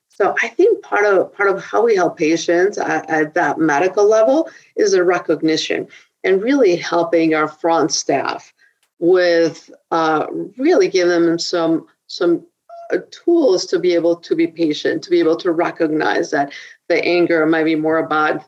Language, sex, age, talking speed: English, female, 50-69, 165 wpm